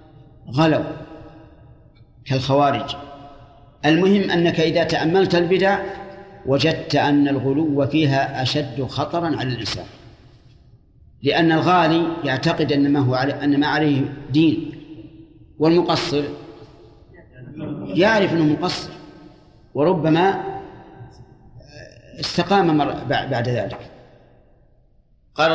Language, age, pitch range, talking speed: Arabic, 50-69, 140-175 Hz, 75 wpm